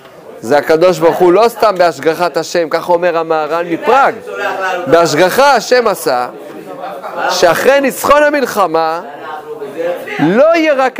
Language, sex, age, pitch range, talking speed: Hebrew, male, 40-59, 165-245 Hz, 115 wpm